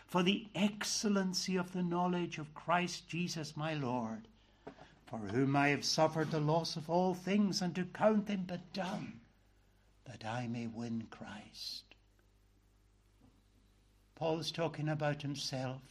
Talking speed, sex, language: 140 wpm, male, English